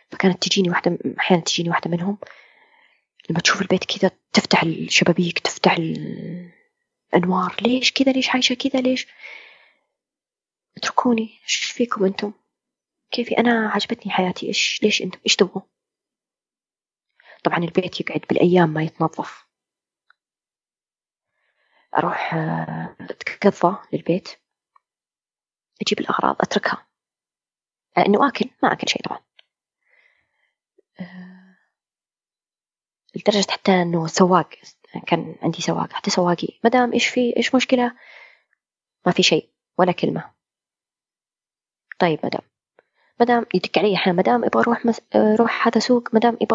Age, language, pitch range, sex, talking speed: 20-39, Arabic, 185-245 Hz, female, 110 wpm